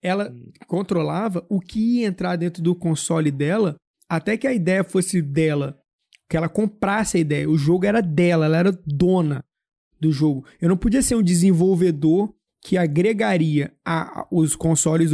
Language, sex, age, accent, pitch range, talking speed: Portuguese, male, 20-39, Brazilian, 165-220 Hz, 165 wpm